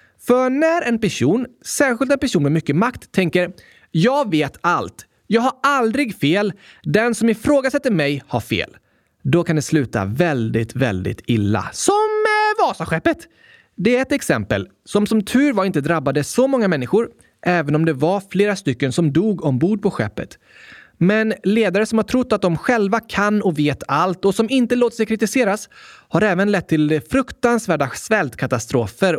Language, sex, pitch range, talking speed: Swedish, male, 155-250 Hz, 165 wpm